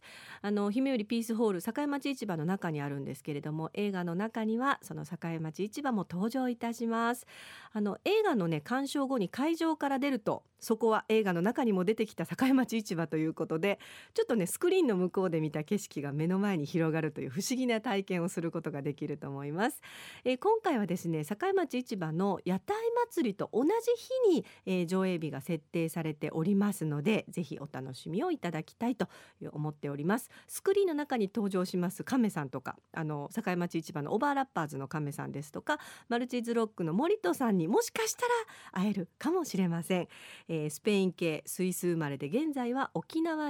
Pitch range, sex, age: 165-255 Hz, female, 40-59